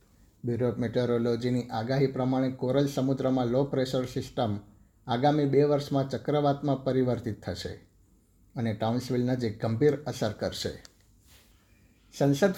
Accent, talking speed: native, 105 wpm